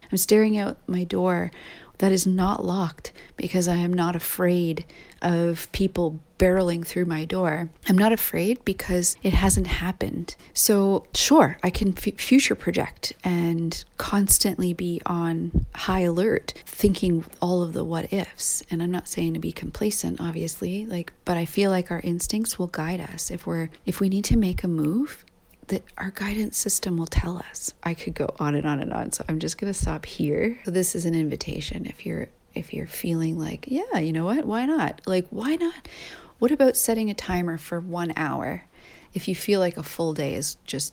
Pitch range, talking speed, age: 165-200 Hz, 190 wpm, 30-49